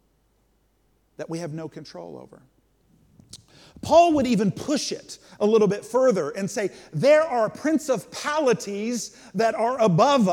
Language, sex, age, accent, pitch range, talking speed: English, male, 50-69, American, 180-240 Hz, 135 wpm